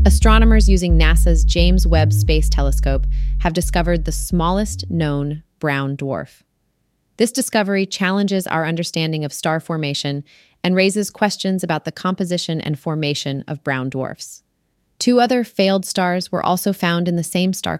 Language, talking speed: English, 150 wpm